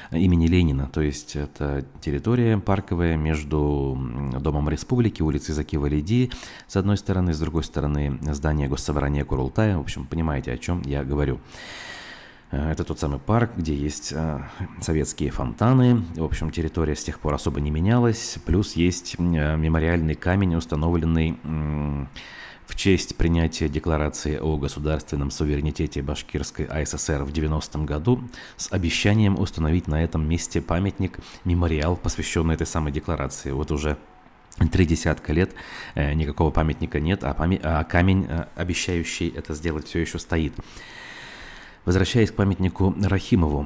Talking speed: 130 wpm